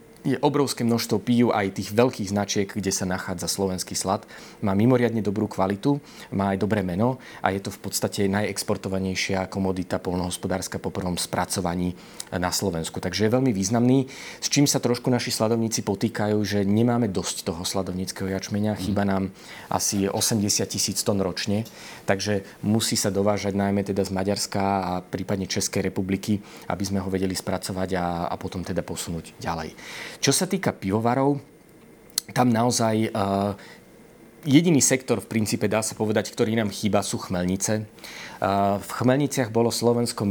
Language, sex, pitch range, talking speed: Slovak, male, 95-110 Hz, 155 wpm